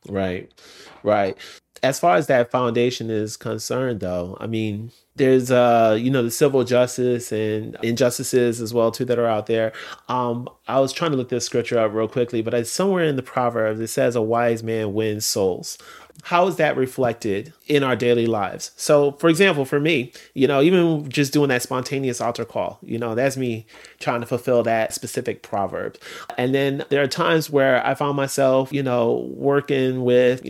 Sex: male